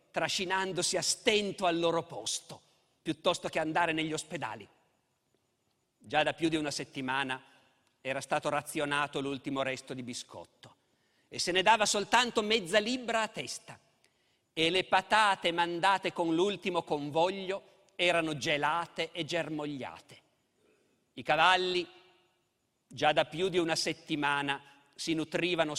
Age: 50-69